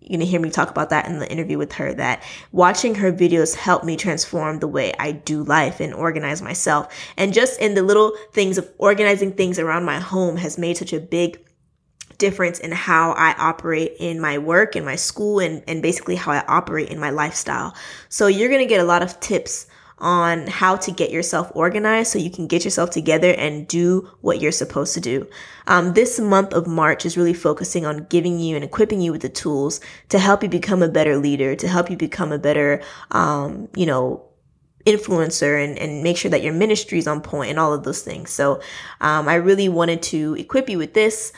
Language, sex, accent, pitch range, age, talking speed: English, female, American, 160-195 Hz, 20-39, 220 wpm